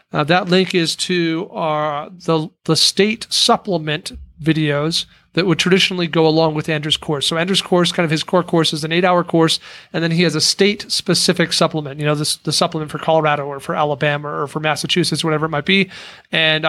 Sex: male